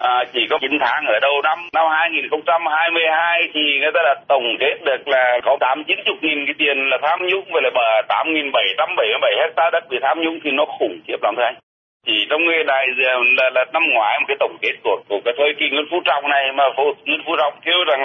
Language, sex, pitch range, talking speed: Vietnamese, male, 145-195 Hz, 245 wpm